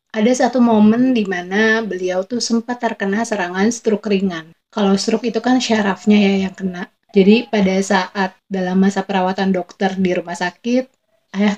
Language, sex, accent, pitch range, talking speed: Indonesian, female, native, 195-235 Hz, 160 wpm